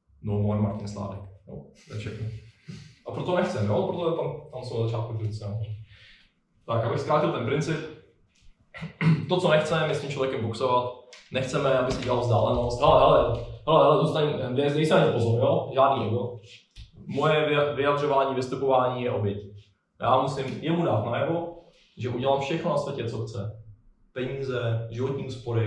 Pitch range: 110-135 Hz